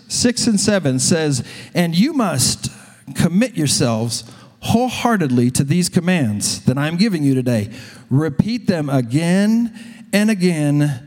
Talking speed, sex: 125 wpm, male